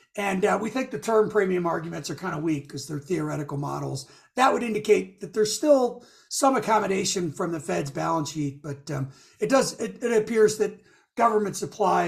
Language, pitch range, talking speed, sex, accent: English, 160-215 Hz, 195 wpm, male, American